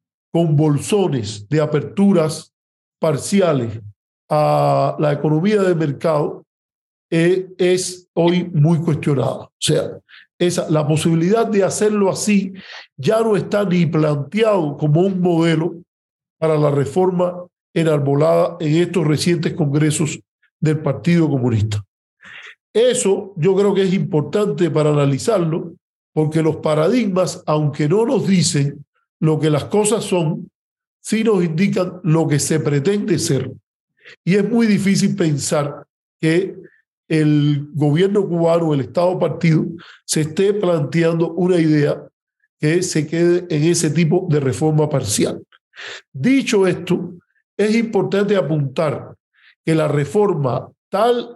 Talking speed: 125 wpm